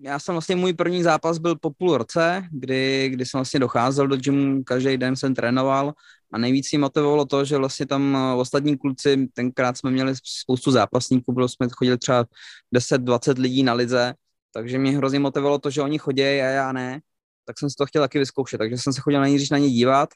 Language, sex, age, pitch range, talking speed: Slovak, male, 20-39, 130-150 Hz, 200 wpm